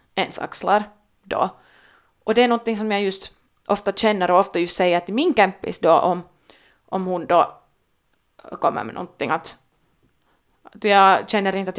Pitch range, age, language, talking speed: 180-210 Hz, 20-39, Finnish, 175 wpm